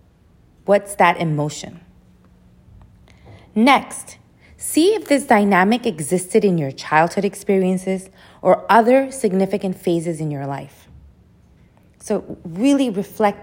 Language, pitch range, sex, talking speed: English, 170-225 Hz, female, 105 wpm